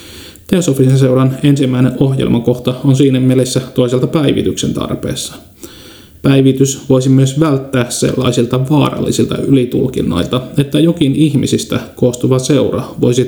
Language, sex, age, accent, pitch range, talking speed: Finnish, male, 30-49, native, 125-140 Hz, 105 wpm